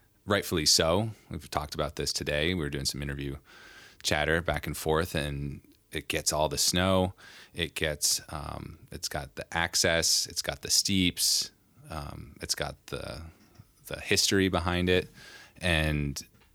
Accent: American